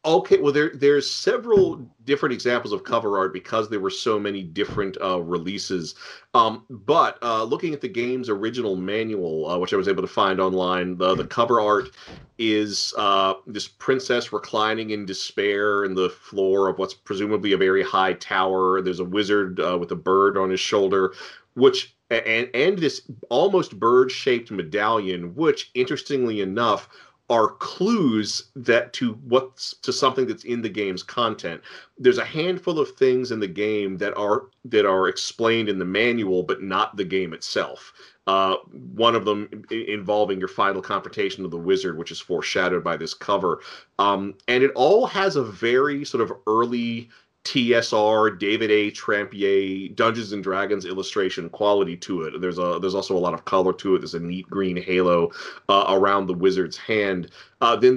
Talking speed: 175 wpm